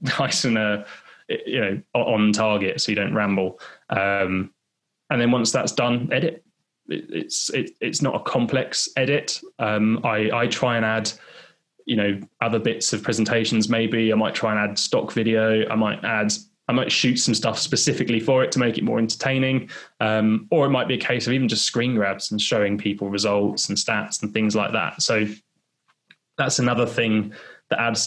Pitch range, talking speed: 105-135 Hz, 190 wpm